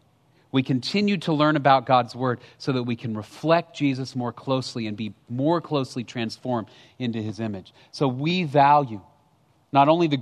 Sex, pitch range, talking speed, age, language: male, 140-205 Hz, 170 wpm, 40-59, English